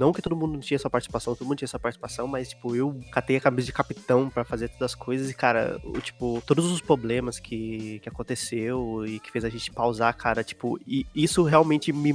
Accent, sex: Brazilian, male